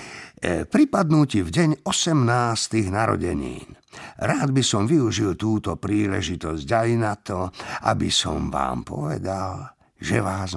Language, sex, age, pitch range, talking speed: Slovak, male, 50-69, 85-120 Hz, 120 wpm